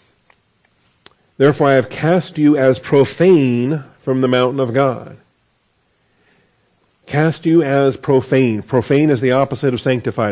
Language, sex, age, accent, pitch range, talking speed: English, male, 50-69, American, 115-135 Hz, 130 wpm